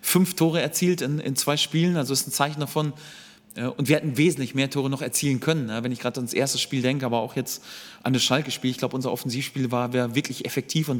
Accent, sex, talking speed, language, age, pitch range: German, male, 240 wpm, German, 30-49, 130-155 Hz